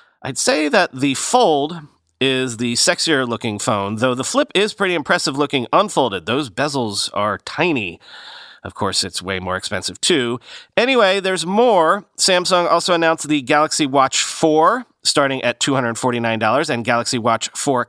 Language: English